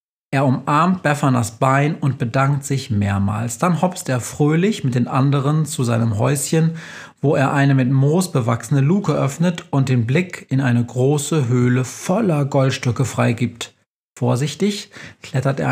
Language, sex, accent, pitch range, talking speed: German, male, German, 125-165 Hz, 150 wpm